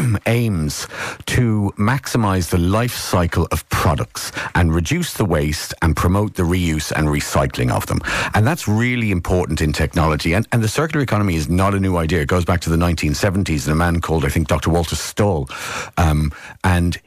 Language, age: English, 50-69